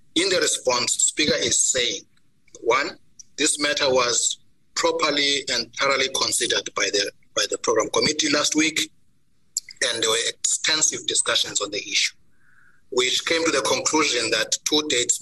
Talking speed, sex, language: 150 wpm, male, English